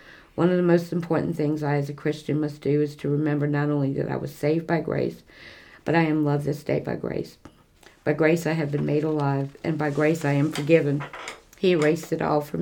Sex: female